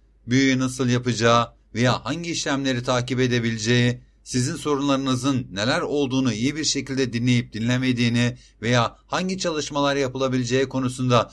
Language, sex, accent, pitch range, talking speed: Turkish, male, native, 125-140 Hz, 115 wpm